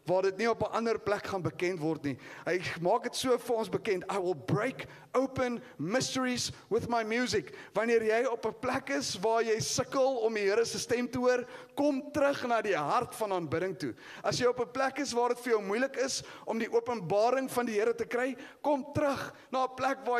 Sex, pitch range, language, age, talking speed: male, 215-255 Hz, English, 40-59, 225 wpm